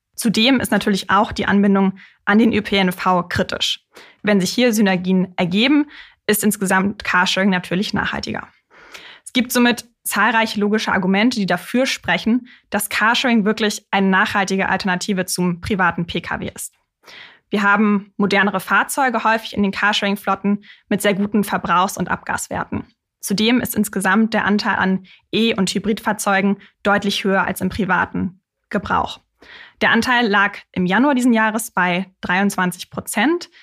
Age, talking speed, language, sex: 20-39, 140 wpm, German, female